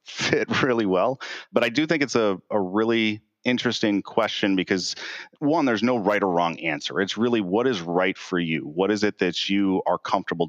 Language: English